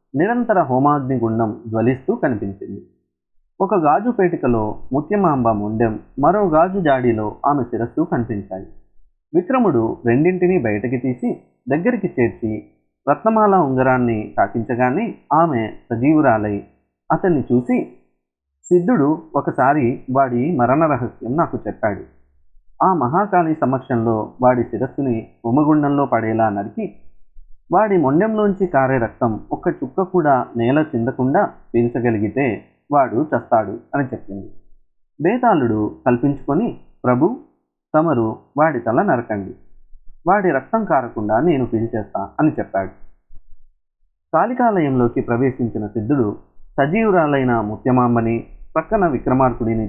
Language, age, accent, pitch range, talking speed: Telugu, 30-49, native, 110-145 Hz, 90 wpm